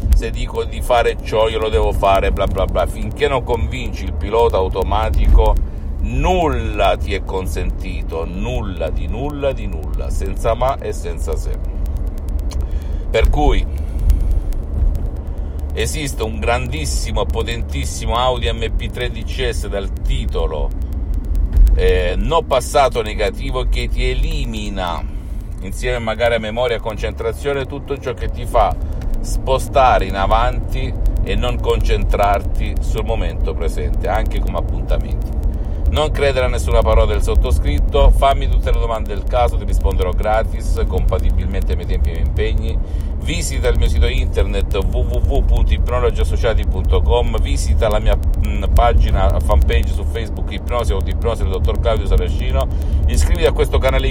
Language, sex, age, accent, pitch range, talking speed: Italian, male, 50-69, native, 70-95 Hz, 135 wpm